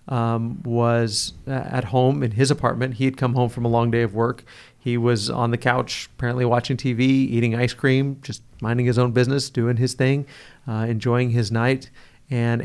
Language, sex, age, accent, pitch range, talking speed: English, male, 40-59, American, 115-130 Hz, 195 wpm